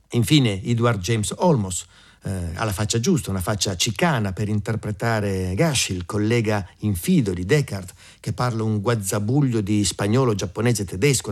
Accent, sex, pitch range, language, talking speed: native, male, 100-130 Hz, Italian, 150 wpm